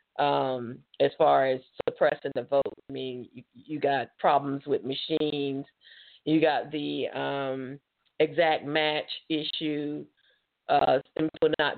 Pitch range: 140-155 Hz